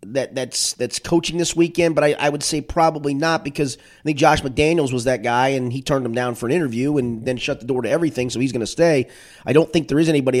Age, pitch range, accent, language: 30-49, 125-160 Hz, American, English